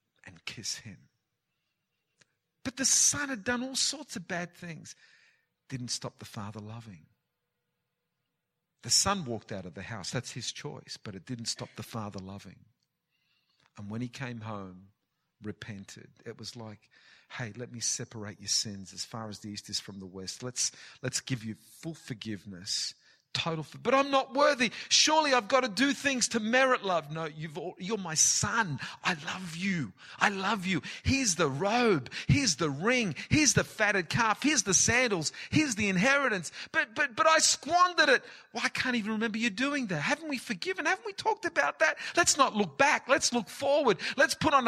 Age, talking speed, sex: 50-69, 185 wpm, male